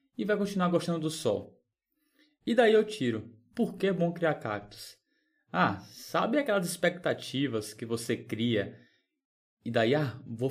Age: 20-39